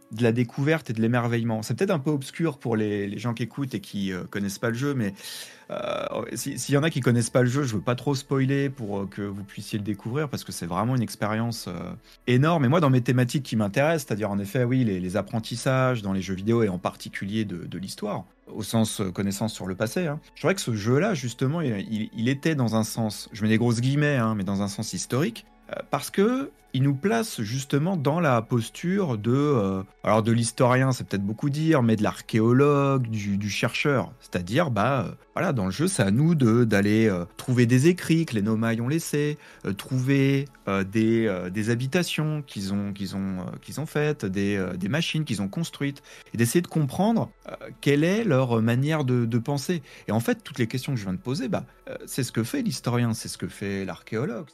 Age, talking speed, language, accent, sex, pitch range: 30-49, 240 wpm, French, French, male, 105-140 Hz